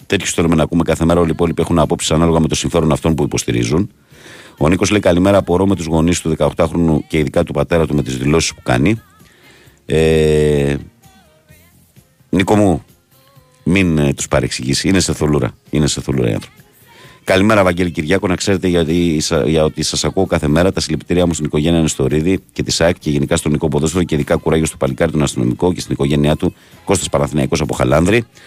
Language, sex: Greek, male